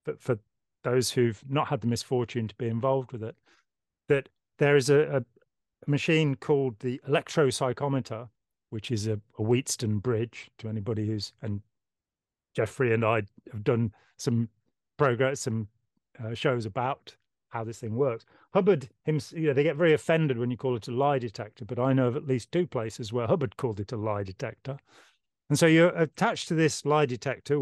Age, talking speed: 40-59, 185 wpm